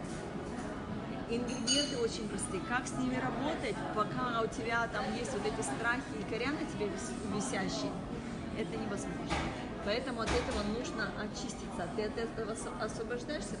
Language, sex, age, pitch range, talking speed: Russian, female, 20-39, 205-230 Hz, 135 wpm